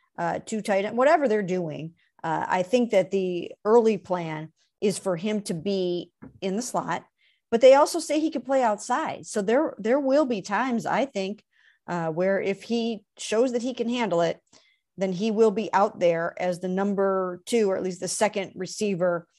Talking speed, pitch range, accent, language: 200 wpm, 180-230 Hz, American, English